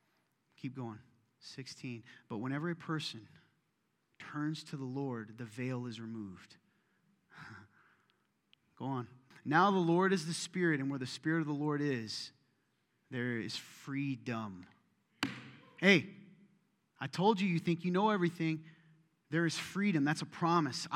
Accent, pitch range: American, 140-200 Hz